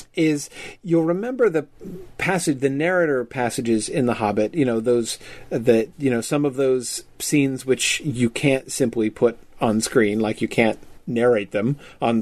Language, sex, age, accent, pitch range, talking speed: English, male, 40-59, American, 120-140 Hz, 165 wpm